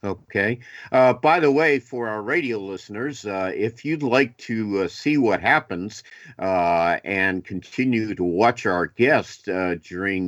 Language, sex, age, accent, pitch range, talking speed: English, male, 50-69, American, 100-130 Hz, 160 wpm